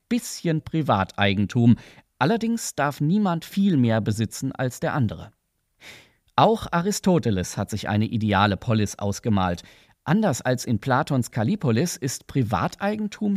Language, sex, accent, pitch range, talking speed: German, male, German, 110-160 Hz, 115 wpm